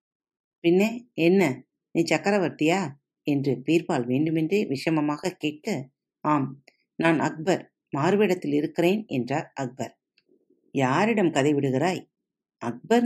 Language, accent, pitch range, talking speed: Tamil, native, 150-225 Hz, 90 wpm